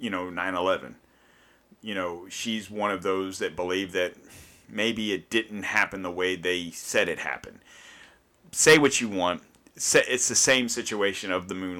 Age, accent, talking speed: 40-59, American, 170 wpm